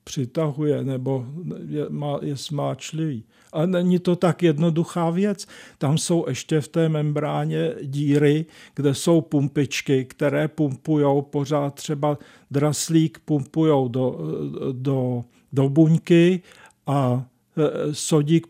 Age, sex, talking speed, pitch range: 50-69, male, 105 wpm, 140-160 Hz